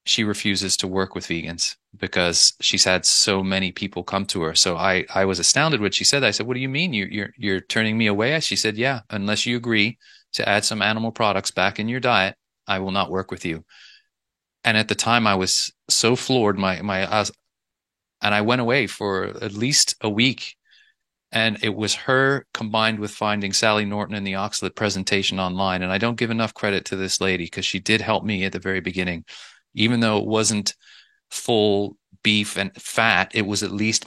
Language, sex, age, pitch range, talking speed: English, male, 30-49, 95-110 Hz, 210 wpm